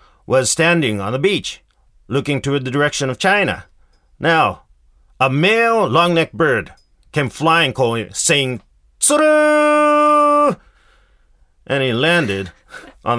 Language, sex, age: Japanese, male, 40-59